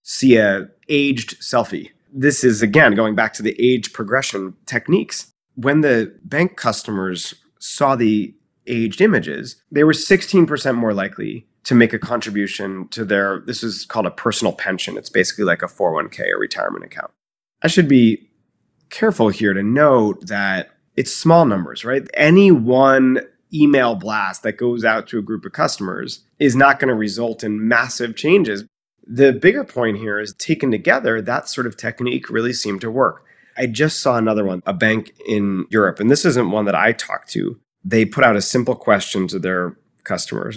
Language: English